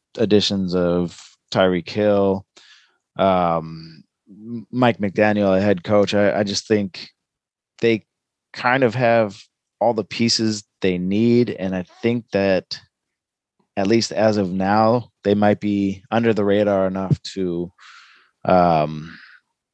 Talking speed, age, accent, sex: 125 wpm, 20-39, American, male